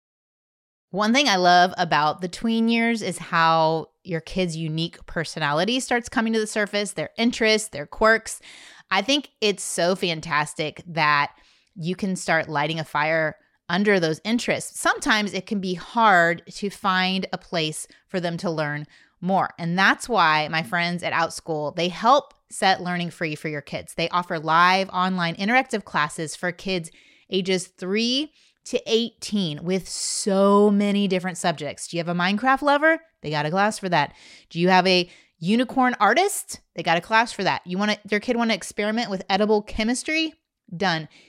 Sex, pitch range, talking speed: female, 170-225 Hz, 170 wpm